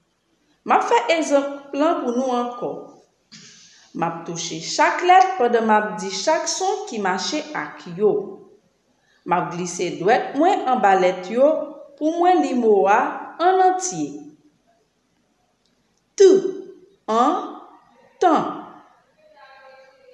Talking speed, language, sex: 105 wpm, English, female